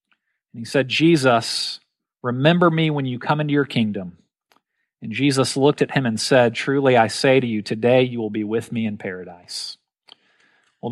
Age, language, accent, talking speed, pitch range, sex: 40-59, English, American, 180 wpm, 120-150 Hz, male